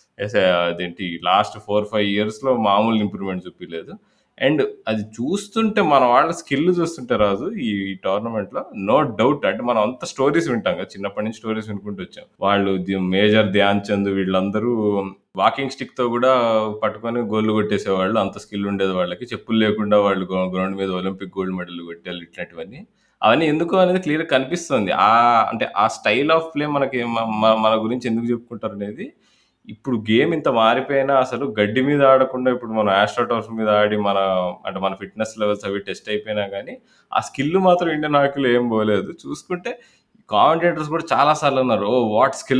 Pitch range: 100-135 Hz